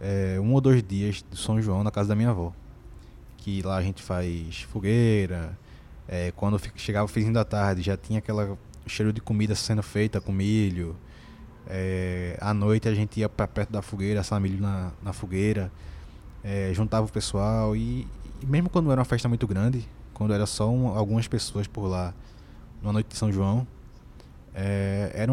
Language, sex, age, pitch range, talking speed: Portuguese, male, 20-39, 95-115 Hz, 185 wpm